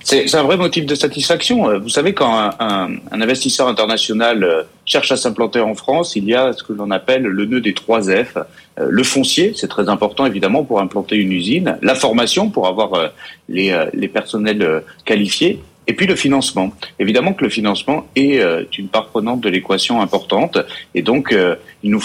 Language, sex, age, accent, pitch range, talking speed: French, male, 30-49, French, 100-125 Hz, 185 wpm